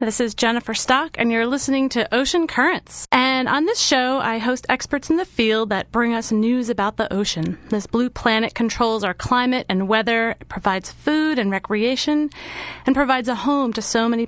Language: English